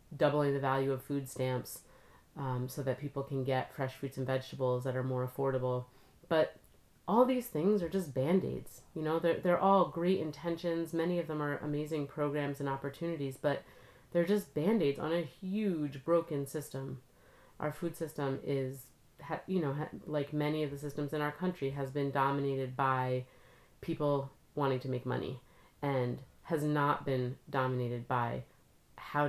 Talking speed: 165 wpm